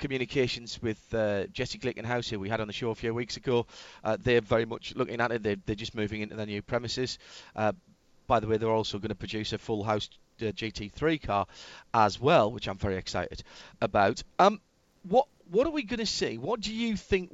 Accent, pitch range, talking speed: British, 105-145 Hz, 220 wpm